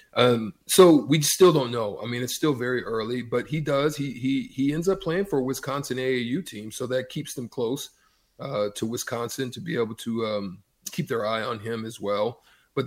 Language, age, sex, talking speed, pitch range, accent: English, 40-59, male, 220 wpm, 110-135 Hz, American